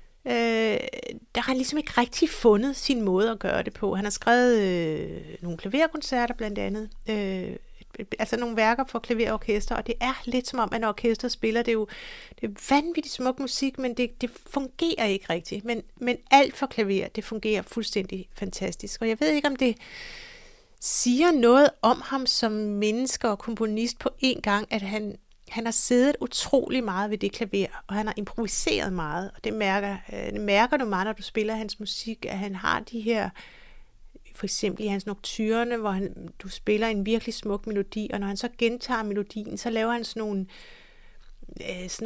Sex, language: female, Danish